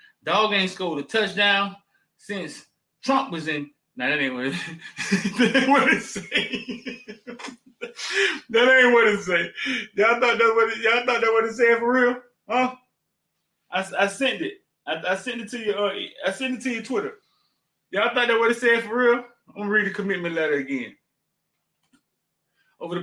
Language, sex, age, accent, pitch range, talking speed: English, male, 20-39, American, 185-250 Hz, 170 wpm